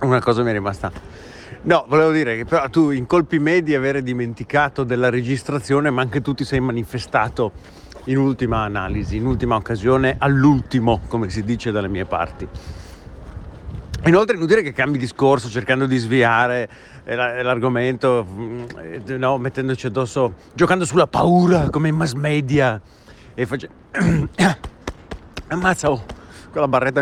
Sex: male